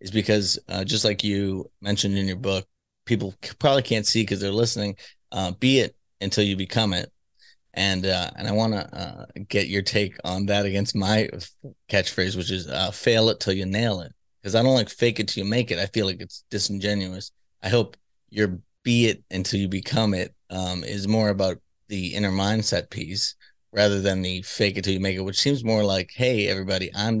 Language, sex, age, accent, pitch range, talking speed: English, male, 30-49, American, 95-110 Hz, 215 wpm